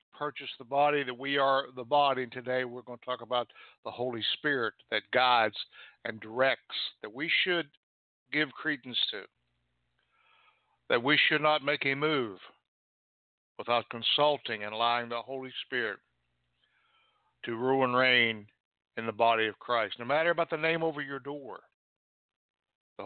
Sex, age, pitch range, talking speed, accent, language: male, 60-79, 110-145 Hz, 155 wpm, American, English